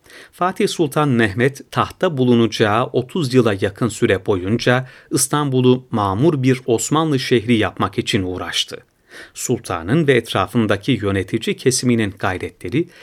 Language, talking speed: Turkish, 110 wpm